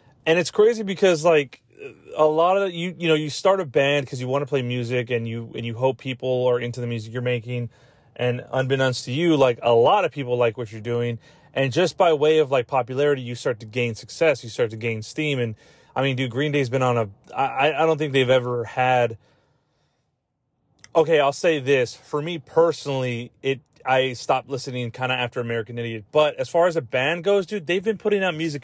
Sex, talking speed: male, 230 wpm